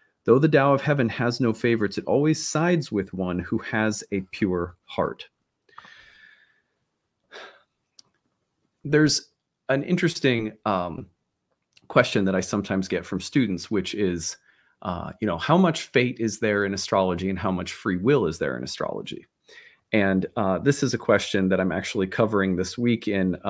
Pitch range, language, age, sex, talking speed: 95-140 Hz, English, 40-59, male, 165 wpm